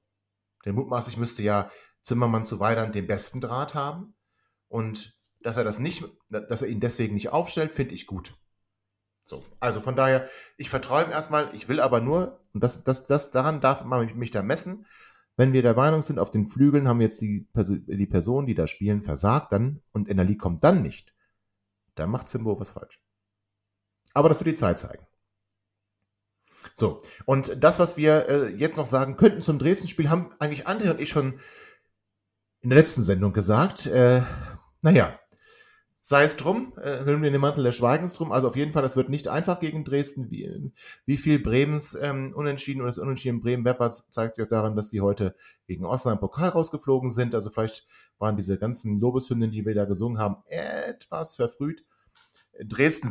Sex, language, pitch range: male, German, 105-145 Hz